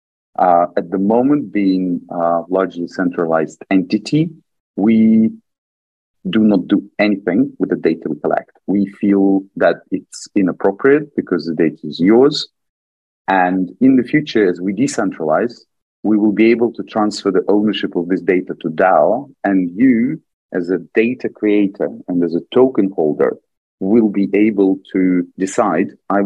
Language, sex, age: English, male, 40-59